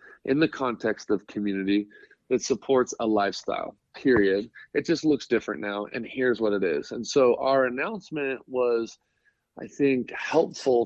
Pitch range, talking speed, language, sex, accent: 115-145 Hz, 155 wpm, English, male, American